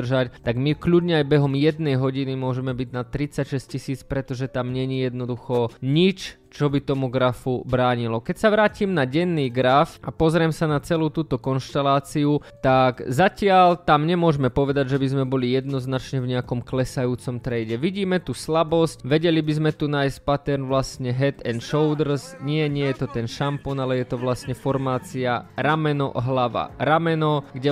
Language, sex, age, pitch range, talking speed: English, male, 20-39, 130-150 Hz, 160 wpm